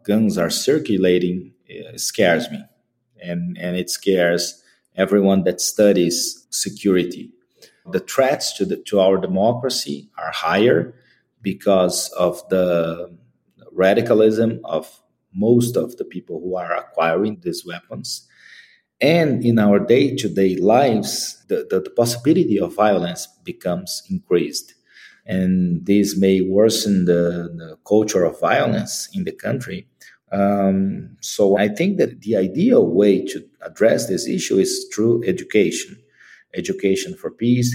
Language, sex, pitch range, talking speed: English, male, 90-120 Hz, 125 wpm